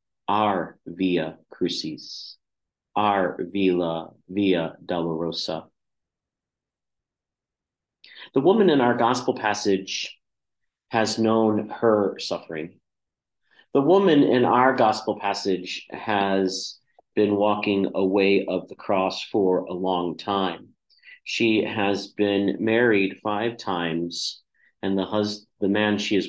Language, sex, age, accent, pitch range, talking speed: English, male, 40-59, American, 95-105 Hz, 110 wpm